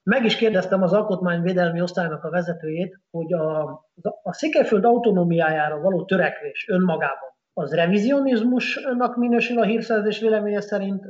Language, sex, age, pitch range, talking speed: Hungarian, male, 30-49, 170-235 Hz, 125 wpm